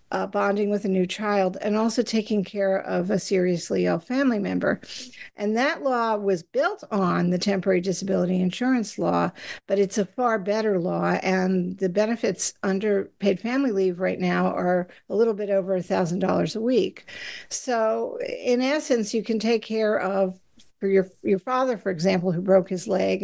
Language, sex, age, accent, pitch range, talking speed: English, female, 50-69, American, 185-220 Hz, 180 wpm